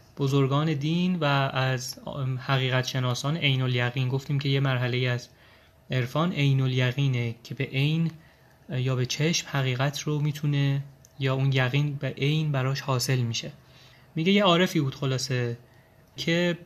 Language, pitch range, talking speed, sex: Persian, 130-160 Hz, 135 wpm, male